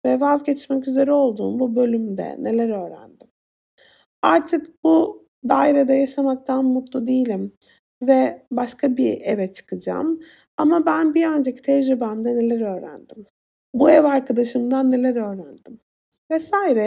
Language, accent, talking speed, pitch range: Turkish, native, 115 wpm, 240-290 Hz